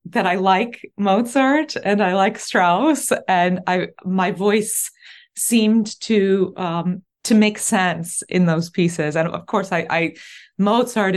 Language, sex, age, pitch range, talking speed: English, female, 20-39, 175-215 Hz, 145 wpm